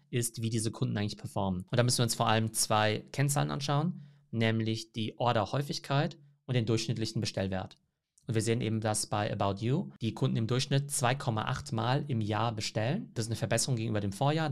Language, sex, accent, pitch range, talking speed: German, male, German, 110-135 Hz, 195 wpm